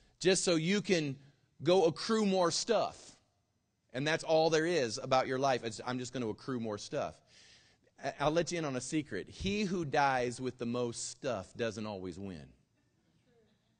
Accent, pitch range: American, 115-165 Hz